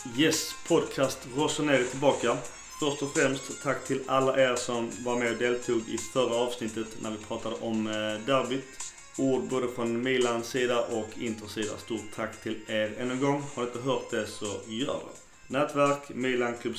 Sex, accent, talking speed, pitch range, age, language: male, native, 175 wpm, 110-130 Hz, 30-49, Swedish